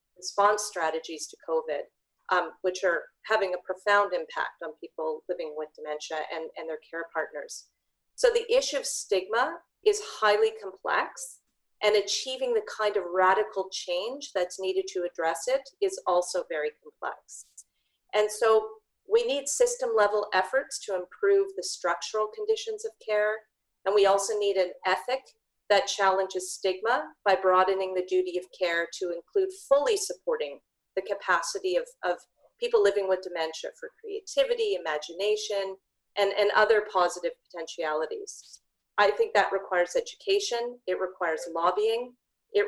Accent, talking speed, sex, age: American, 145 wpm, female, 40-59